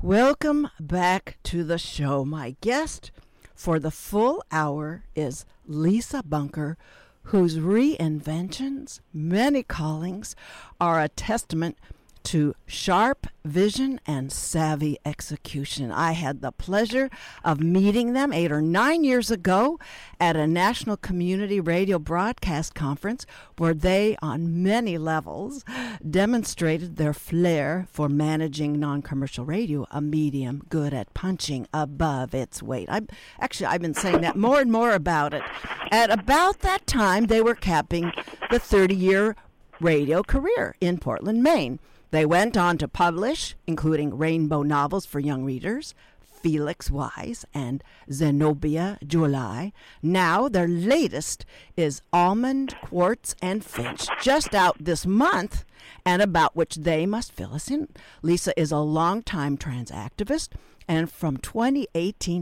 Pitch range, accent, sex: 150-210 Hz, American, female